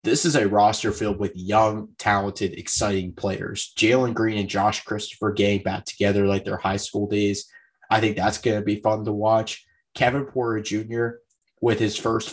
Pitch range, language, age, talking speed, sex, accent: 100-110 Hz, English, 20-39, 185 wpm, male, American